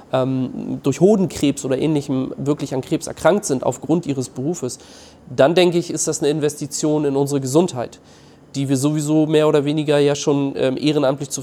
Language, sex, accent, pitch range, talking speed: German, male, German, 135-155 Hz, 170 wpm